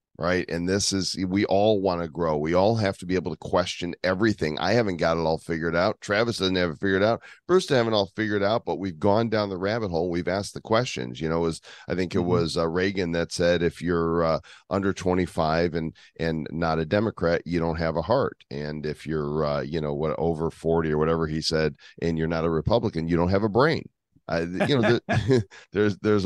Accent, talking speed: American, 235 wpm